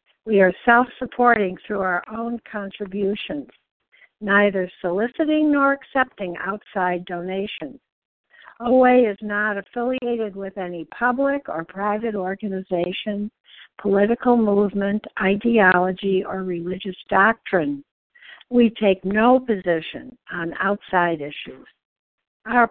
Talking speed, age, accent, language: 100 wpm, 60-79, American, English